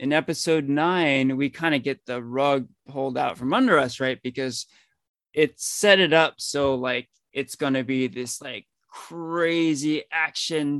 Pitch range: 130-165 Hz